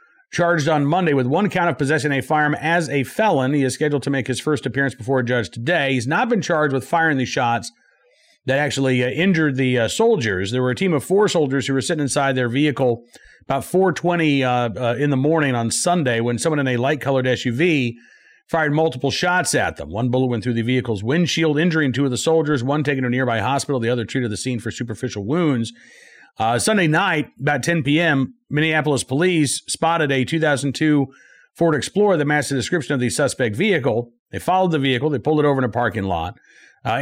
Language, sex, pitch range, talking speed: English, male, 125-160 Hz, 215 wpm